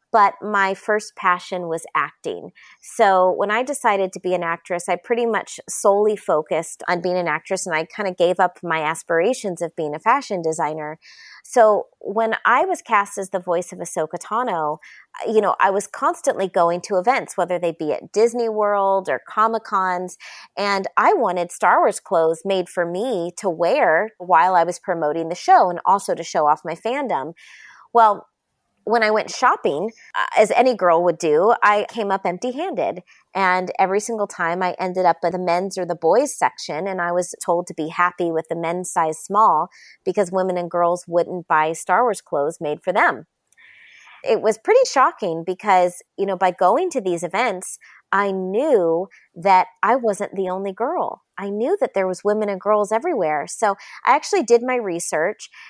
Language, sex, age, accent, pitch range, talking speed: English, female, 30-49, American, 175-210 Hz, 190 wpm